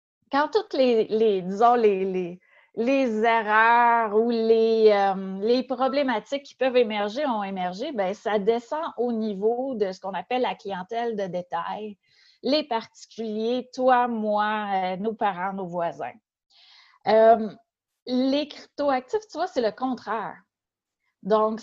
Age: 30-49